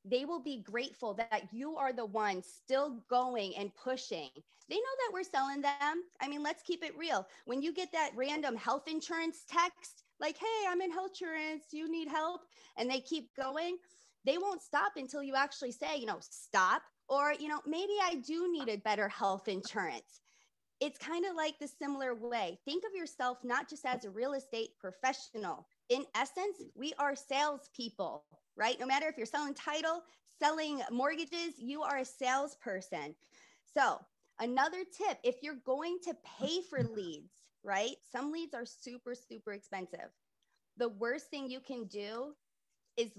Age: 20-39